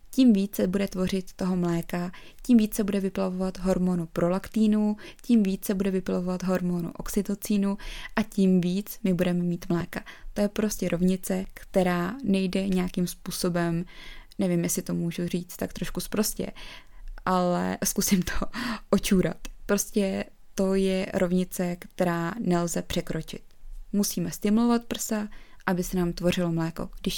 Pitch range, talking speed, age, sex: 180-210 Hz, 135 wpm, 20-39, female